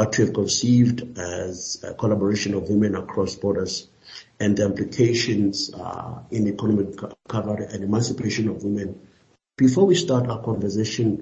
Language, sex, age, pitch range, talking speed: English, male, 50-69, 100-110 Hz, 140 wpm